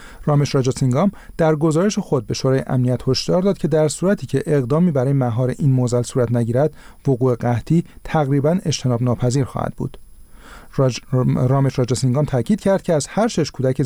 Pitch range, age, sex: 125-155 Hz, 40-59, male